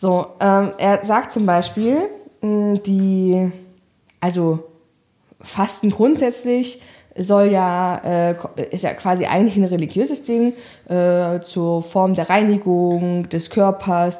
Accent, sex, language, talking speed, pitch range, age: German, female, German, 120 wpm, 175-225 Hz, 20-39